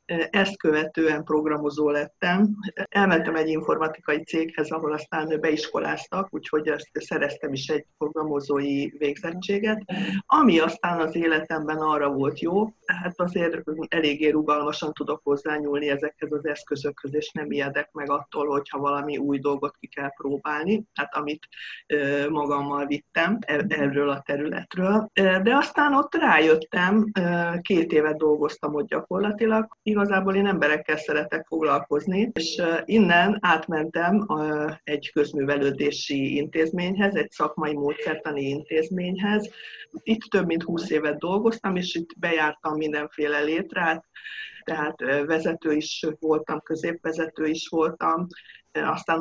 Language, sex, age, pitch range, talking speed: Hungarian, female, 50-69, 150-190 Hz, 115 wpm